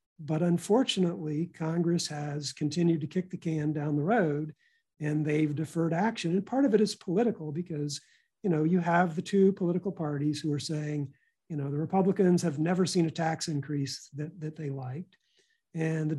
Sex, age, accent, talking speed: male, 50-69, American, 185 wpm